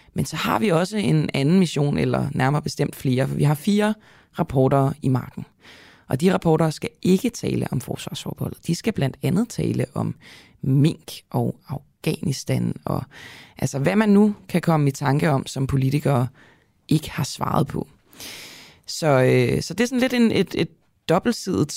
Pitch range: 130-185 Hz